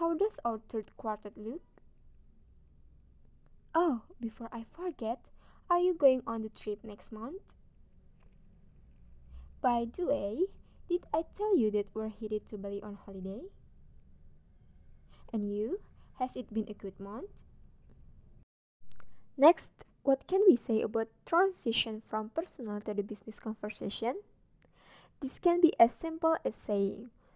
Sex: female